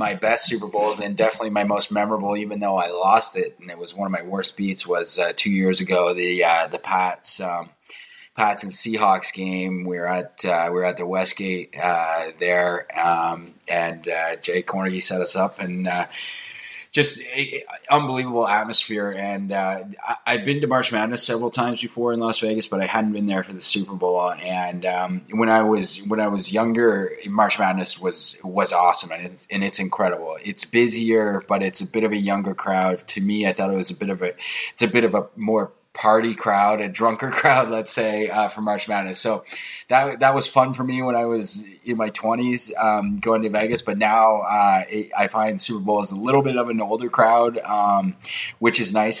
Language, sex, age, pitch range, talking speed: English, male, 20-39, 95-115 Hz, 215 wpm